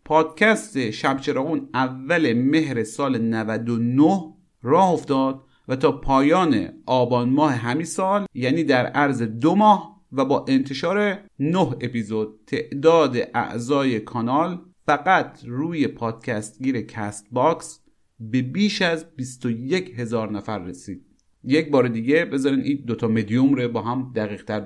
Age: 40-59